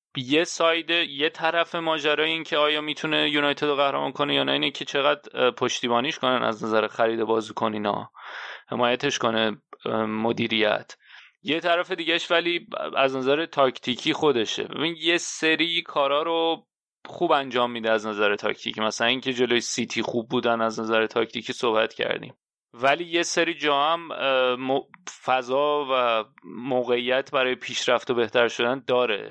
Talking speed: 145 wpm